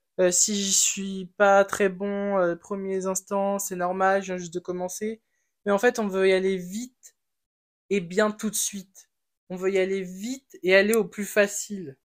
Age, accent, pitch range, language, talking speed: 20-39, French, 185-205 Hz, French, 200 wpm